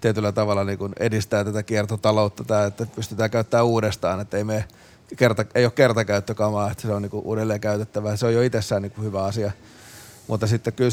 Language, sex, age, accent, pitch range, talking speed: Finnish, male, 30-49, native, 105-115 Hz, 190 wpm